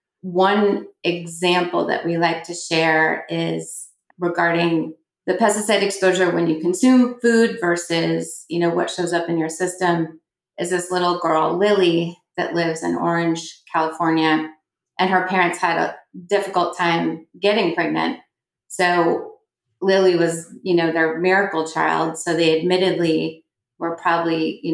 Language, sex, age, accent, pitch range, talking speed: English, female, 30-49, American, 165-185 Hz, 140 wpm